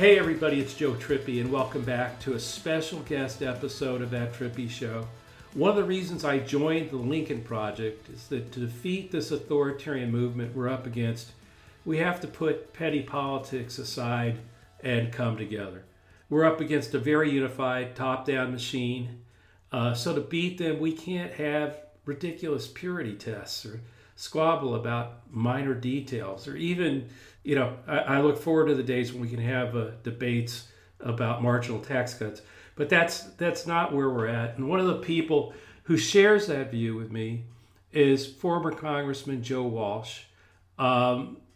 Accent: American